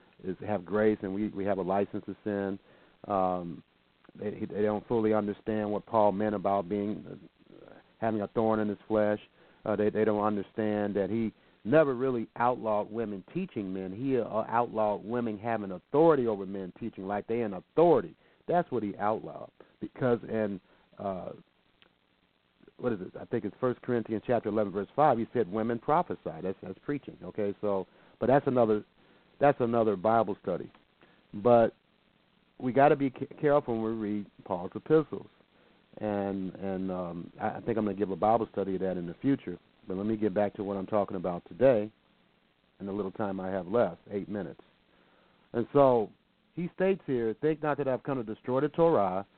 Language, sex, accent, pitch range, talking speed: English, male, American, 100-125 Hz, 185 wpm